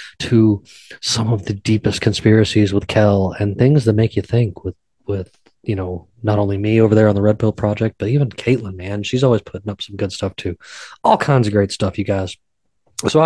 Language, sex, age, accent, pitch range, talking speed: English, male, 20-39, American, 105-130 Hz, 215 wpm